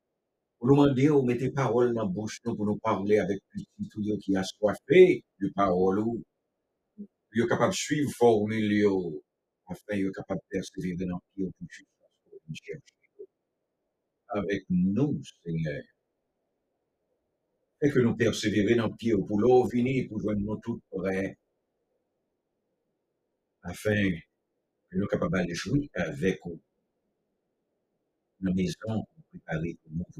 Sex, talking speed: male, 105 wpm